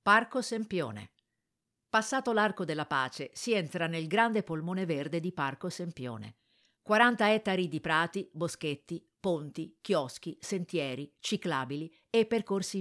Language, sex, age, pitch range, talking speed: Italian, female, 50-69, 150-200 Hz, 120 wpm